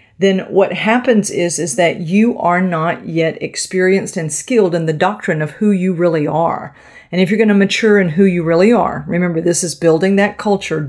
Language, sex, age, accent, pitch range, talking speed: English, female, 50-69, American, 160-200 Hz, 210 wpm